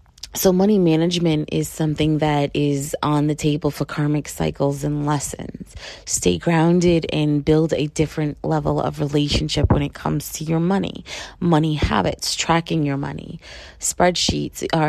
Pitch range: 140-170 Hz